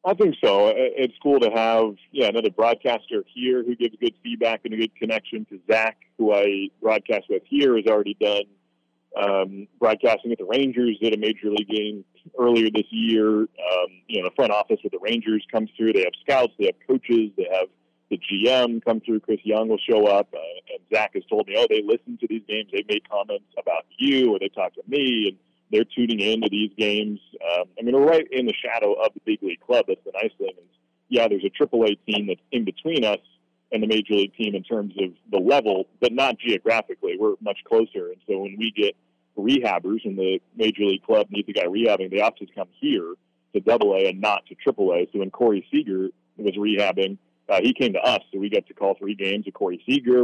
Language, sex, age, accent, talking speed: English, male, 40-59, American, 230 wpm